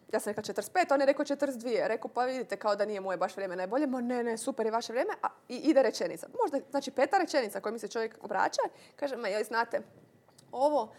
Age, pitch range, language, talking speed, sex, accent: 20-39, 210-275 Hz, Croatian, 230 wpm, female, native